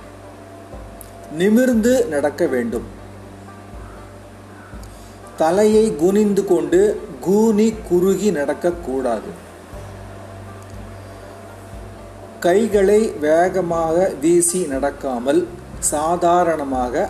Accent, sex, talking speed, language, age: native, male, 50 wpm, Tamil, 40-59